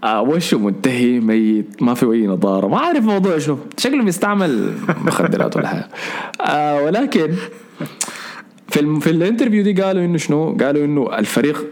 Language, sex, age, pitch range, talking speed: Arabic, male, 20-39, 125-195 Hz, 150 wpm